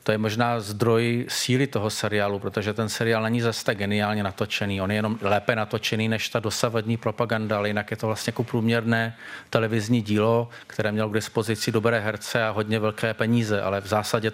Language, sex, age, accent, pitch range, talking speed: Czech, male, 40-59, native, 110-115 Hz, 185 wpm